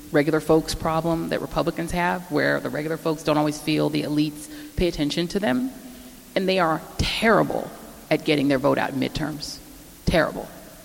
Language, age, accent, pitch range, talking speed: English, 30-49, American, 150-175 Hz, 170 wpm